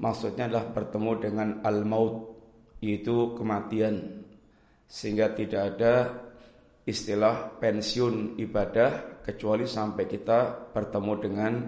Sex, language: male, Indonesian